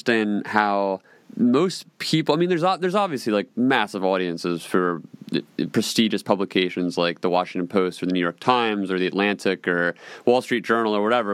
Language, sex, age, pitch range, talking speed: English, male, 30-49, 95-110 Hz, 165 wpm